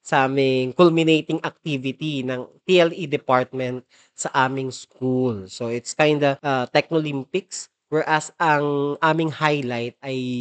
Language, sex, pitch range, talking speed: Filipino, male, 125-155 Hz, 120 wpm